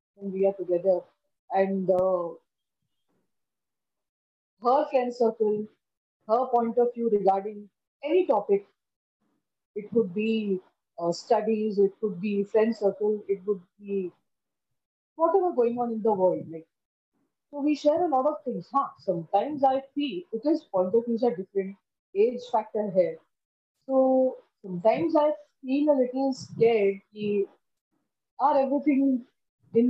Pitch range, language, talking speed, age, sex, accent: 195-265 Hz, English, 135 wpm, 30-49, female, Indian